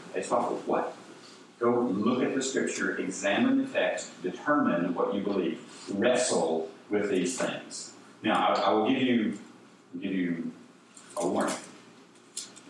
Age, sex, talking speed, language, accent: 40-59, male, 135 wpm, English, American